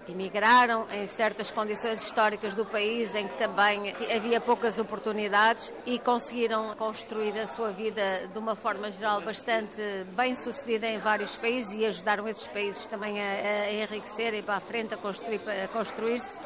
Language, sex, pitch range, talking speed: Portuguese, female, 210-235 Hz, 155 wpm